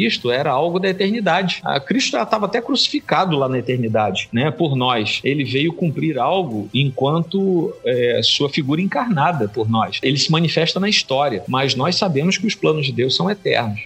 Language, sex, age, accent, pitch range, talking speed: Portuguese, male, 40-59, Brazilian, 135-185 Hz, 170 wpm